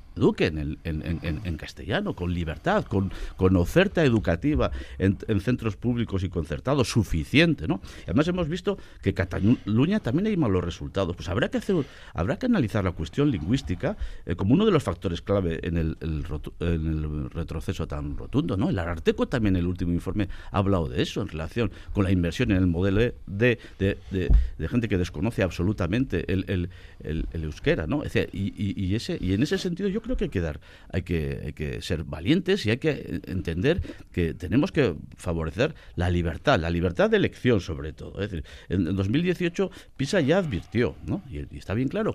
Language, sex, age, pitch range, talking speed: Spanish, male, 50-69, 85-140 Hz, 200 wpm